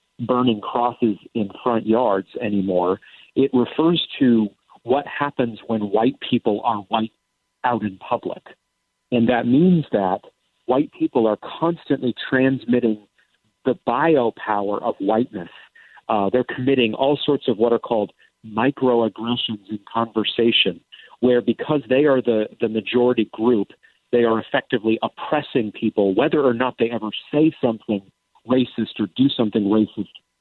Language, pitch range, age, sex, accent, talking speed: English, 110-130 Hz, 40-59, male, American, 140 wpm